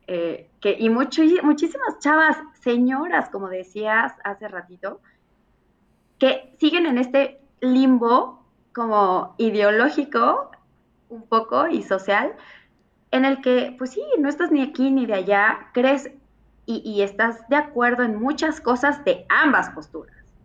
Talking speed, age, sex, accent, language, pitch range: 130 wpm, 20-39, female, Mexican, Spanish, 190-265 Hz